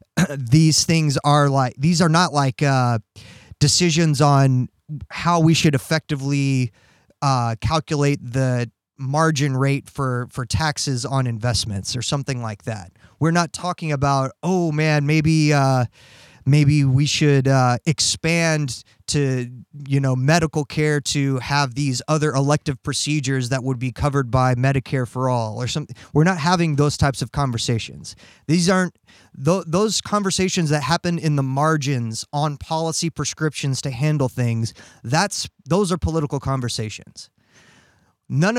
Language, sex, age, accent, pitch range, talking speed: English, male, 20-39, American, 125-155 Hz, 140 wpm